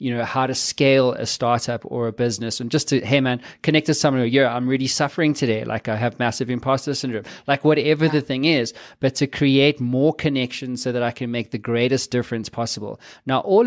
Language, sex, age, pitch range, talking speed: English, male, 20-39, 120-140 Hz, 225 wpm